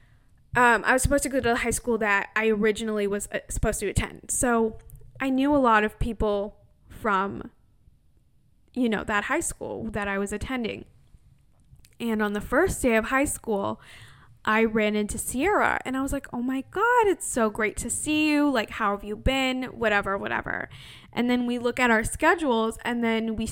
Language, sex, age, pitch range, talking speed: English, female, 20-39, 205-240 Hz, 195 wpm